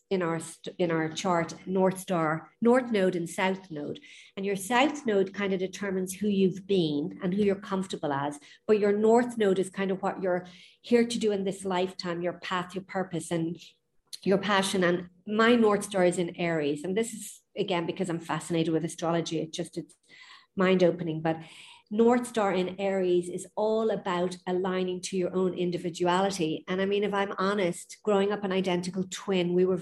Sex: female